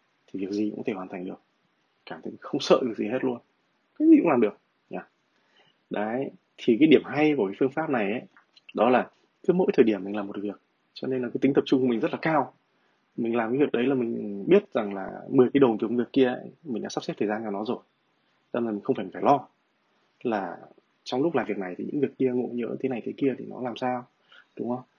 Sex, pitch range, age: male, 105-130 Hz, 20-39